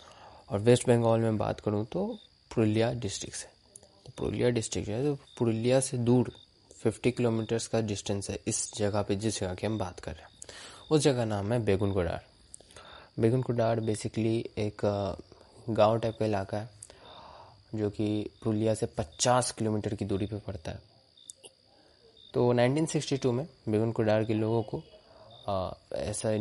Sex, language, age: male, Hindi, 20-39